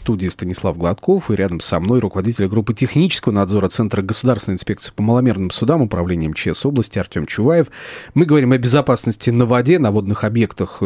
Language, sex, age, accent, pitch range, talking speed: Russian, male, 30-49, native, 100-125 Hz, 170 wpm